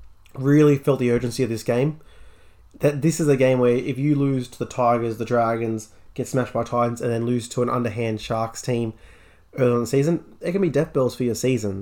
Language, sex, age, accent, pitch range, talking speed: English, male, 20-39, Australian, 115-135 Hz, 230 wpm